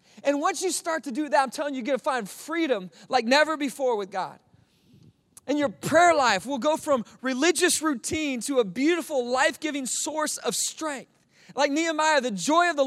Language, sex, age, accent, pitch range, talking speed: English, male, 30-49, American, 210-280 Hz, 195 wpm